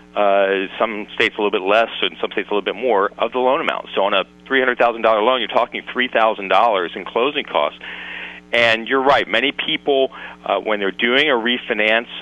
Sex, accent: male, American